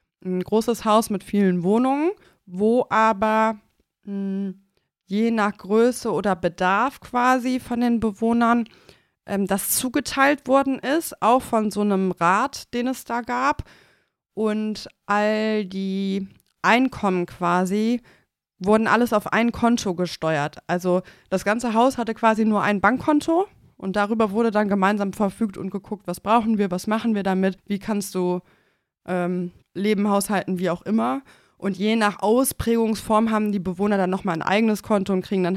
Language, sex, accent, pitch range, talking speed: German, female, German, 180-220 Hz, 150 wpm